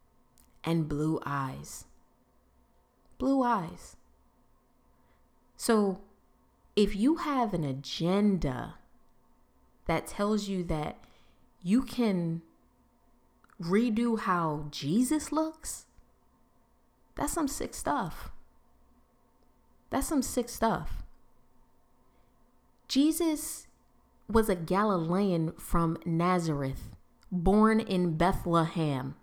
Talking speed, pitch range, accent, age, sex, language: 80 wpm, 180-245 Hz, American, 20-39, female, English